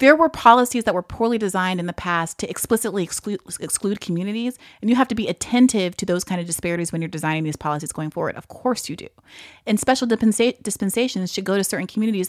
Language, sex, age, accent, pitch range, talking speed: English, female, 30-49, American, 185-235 Hz, 215 wpm